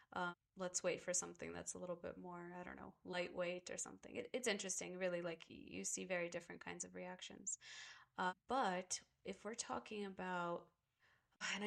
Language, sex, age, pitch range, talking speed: English, female, 20-39, 175-195 Hz, 175 wpm